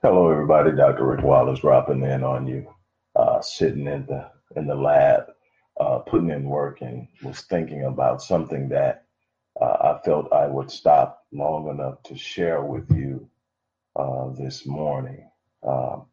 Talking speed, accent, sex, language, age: 155 wpm, American, male, English, 40-59